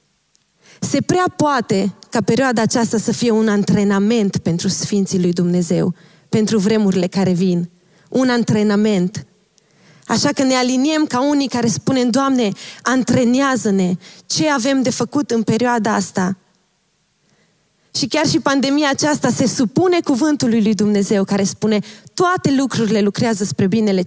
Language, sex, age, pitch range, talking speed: Romanian, female, 20-39, 195-260 Hz, 135 wpm